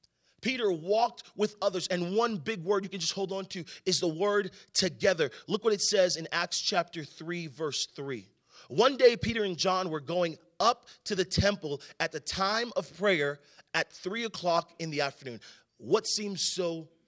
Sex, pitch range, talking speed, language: male, 165-220 Hz, 185 wpm, English